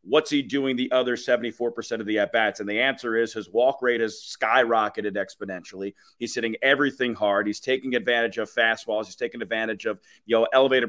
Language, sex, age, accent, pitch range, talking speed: English, male, 30-49, American, 110-135 Hz, 195 wpm